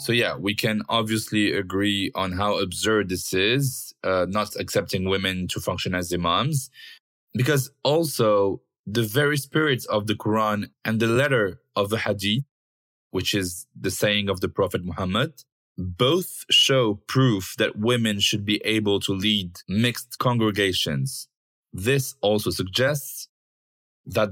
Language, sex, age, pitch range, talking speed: French, male, 20-39, 95-125 Hz, 140 wpm